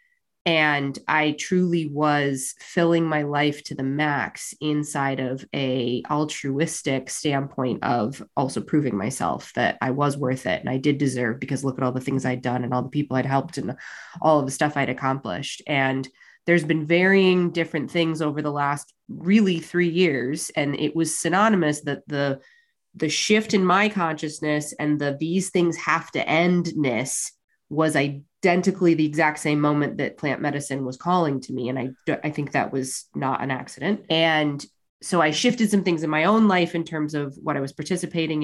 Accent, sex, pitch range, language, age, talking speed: American, female, 140-175 Hz, English, 20-39, 185 wpm